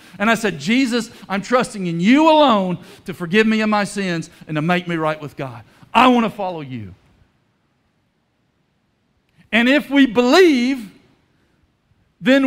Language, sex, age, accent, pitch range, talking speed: English, male, 50-69, American, 175-240 Hz, 155 wpm